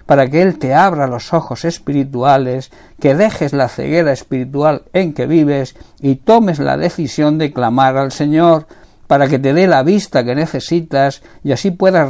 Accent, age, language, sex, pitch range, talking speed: Spanish, 60-79, Spanish, male, 140-170 Hz, 175 wpm